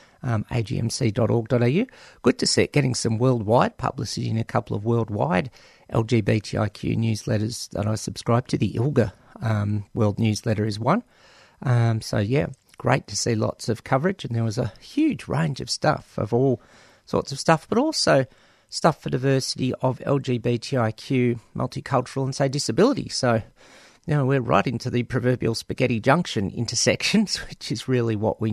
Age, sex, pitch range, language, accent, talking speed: 40-59, male, 115-150 Hz, English, Australian, 160 wpm